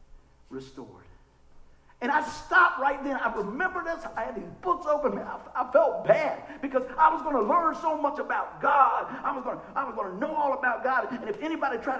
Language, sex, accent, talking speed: English, male, American, 225 wpm